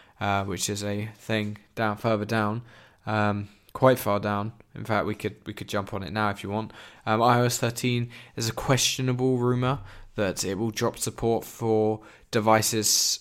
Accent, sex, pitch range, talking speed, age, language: British, male, 100-115 Hz, 175 wpm, 10-29, English